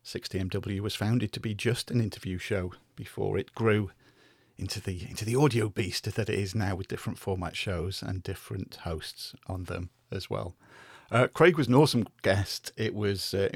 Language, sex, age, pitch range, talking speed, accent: English, male, 40-59, 100-125 Hz, 185 wpm, British